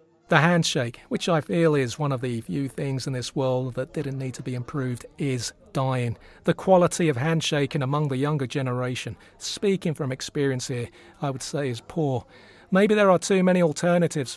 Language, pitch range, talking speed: English, 130-165 Hz, 190 wpm